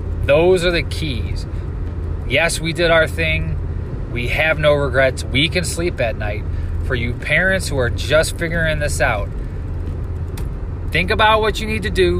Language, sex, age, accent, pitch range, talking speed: English, male, 20-39, American, 85-135 Hz, 165 wpm